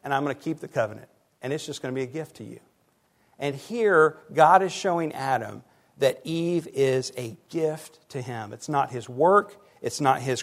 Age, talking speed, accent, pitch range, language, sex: 50-69, 215 wpm, American, 135-175 Hz, English, male